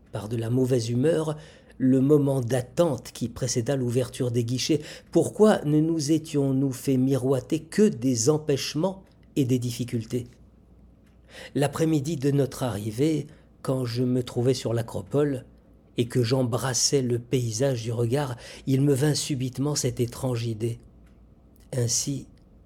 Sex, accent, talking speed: male, French, 130 wpm